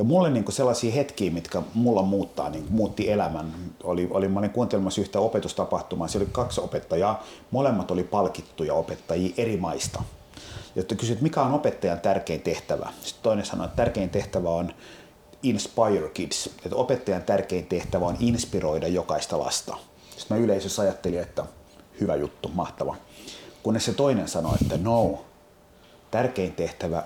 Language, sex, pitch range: Finnish, male, 95-120 Hz